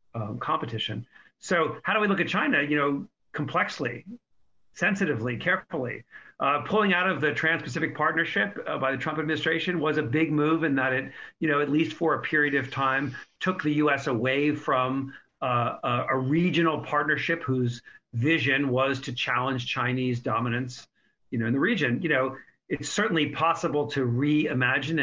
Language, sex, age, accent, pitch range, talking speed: English, male, 50-69, American, 130-160 Hz, 170 wpm